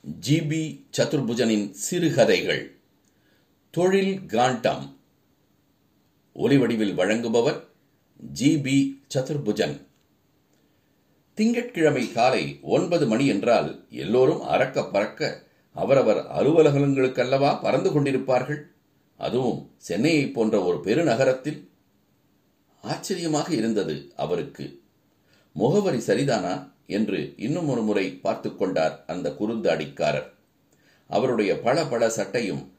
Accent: native